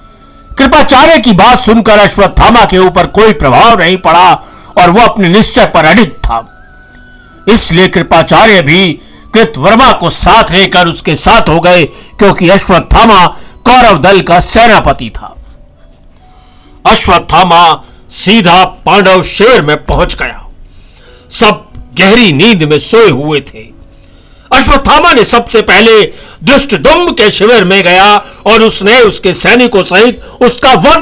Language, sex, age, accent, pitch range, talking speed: Hindi, male, 60-79, native, 160-230 Hz, 130 wpm